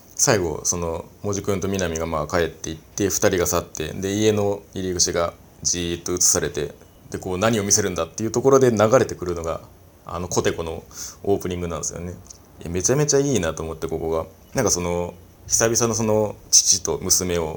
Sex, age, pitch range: male, 20-39, 85-105 Hz